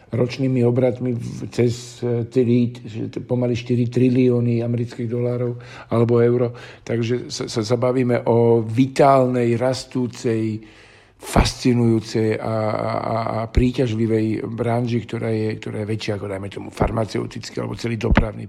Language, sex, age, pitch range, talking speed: Slovak, male, 50-69, 110-130 Hz, 110 wpm